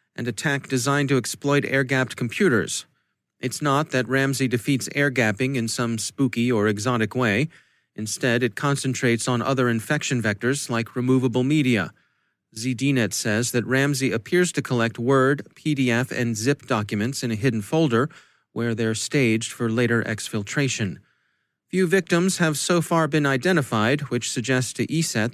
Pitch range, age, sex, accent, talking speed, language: 115-140 Hz, 30-49, male, American, 145 wpm, English